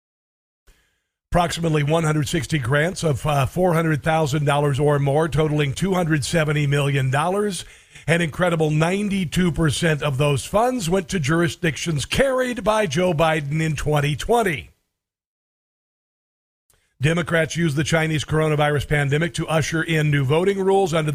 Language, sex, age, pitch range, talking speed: English, male, 50-69, 150-180 Hz, 110 wpm